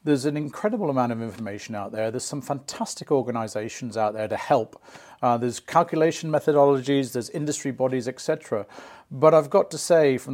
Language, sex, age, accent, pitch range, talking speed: English, male, 40-59, British, 120-155 Hz, 175 wpm